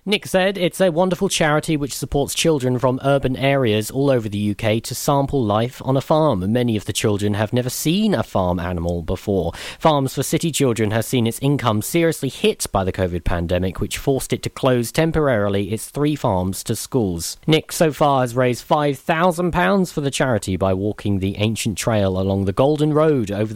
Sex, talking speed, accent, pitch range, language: male, 195 wpm, British, 105-145 Hz, English